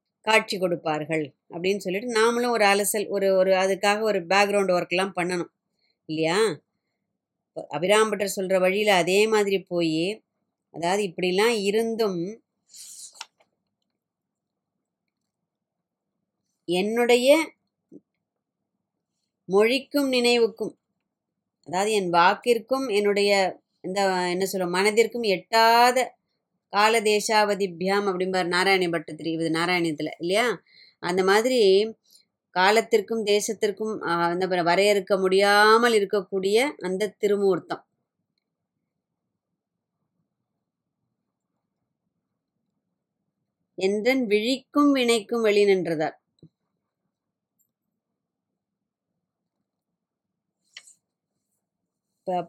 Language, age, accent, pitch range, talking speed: Tamil, 20-39, native, 185-220 Hz, 70 wpm